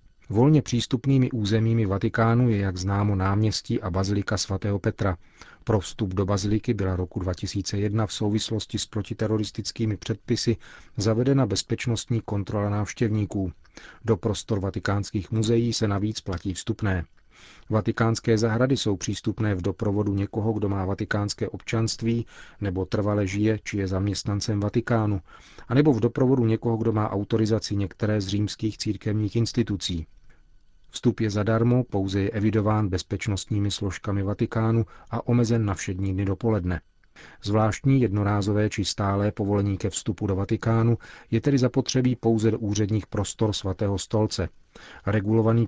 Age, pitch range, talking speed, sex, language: 40-59, 100-115 Hz, 135 wpm, male, Czech